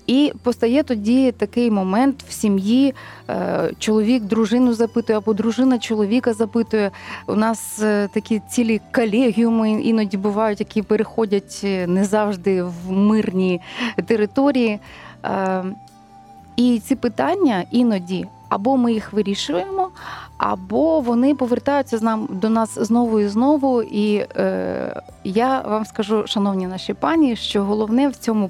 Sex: female